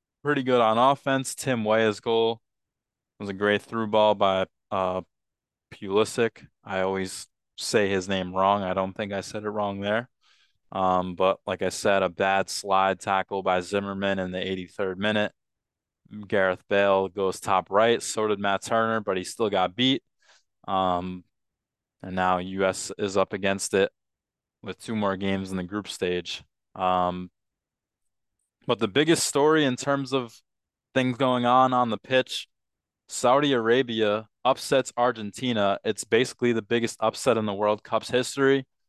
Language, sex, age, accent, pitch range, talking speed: English, male, 20-39, American, 95-115 Hz, 160 wpm